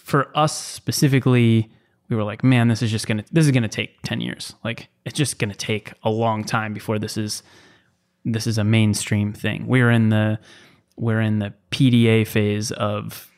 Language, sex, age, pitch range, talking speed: English, male, 20-39, 110-130 Hz, 200 wpm